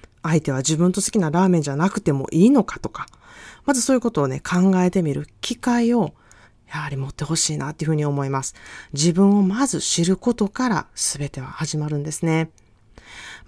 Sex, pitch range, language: female, 150-245 Hz, Japanese